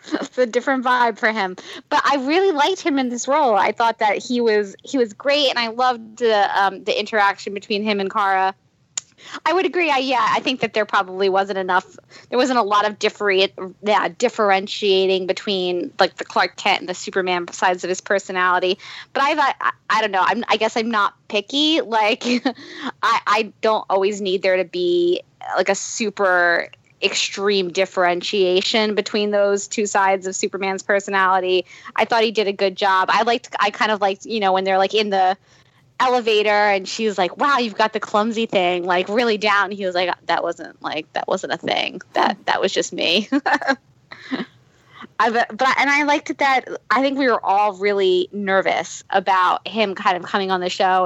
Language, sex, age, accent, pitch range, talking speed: English, female, 20-39, American, 190-235 Hz, 200 wpm